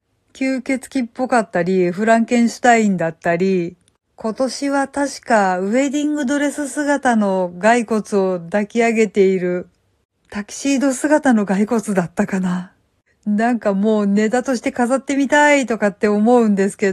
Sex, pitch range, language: female, 195-245 Hz, Japanese